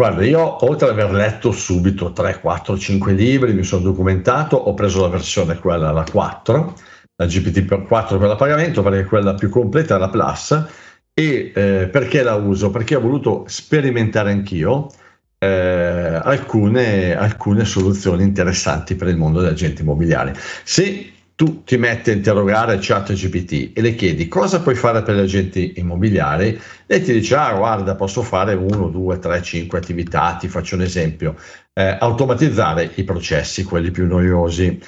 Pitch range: 90-115 Hz